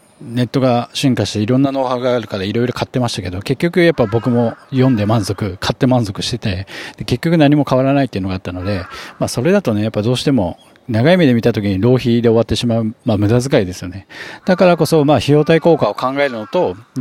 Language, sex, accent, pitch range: Japanese, male, native, 105-140 Hz